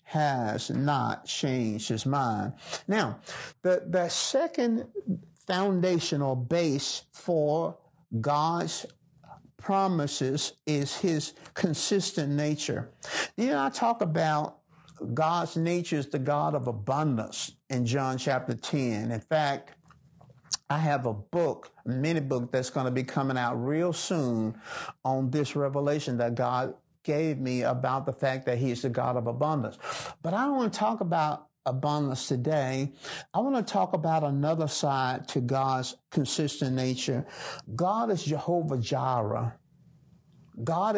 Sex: male